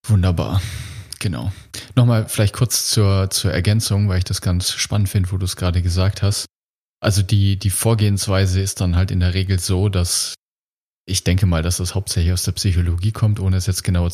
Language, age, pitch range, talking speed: German, 30-49, 90-105 Hz, 195 wpm